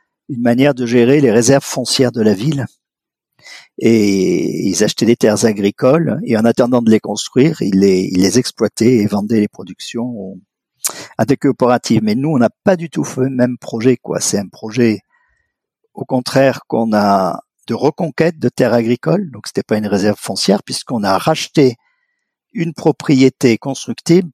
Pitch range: 115-155 Hz